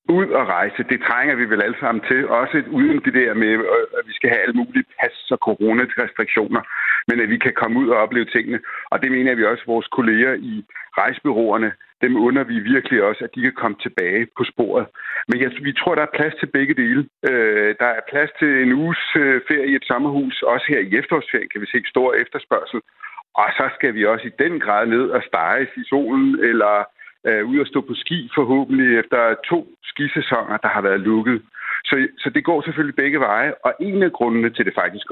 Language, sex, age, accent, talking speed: Danish, male, 60-79, native, 215 wpm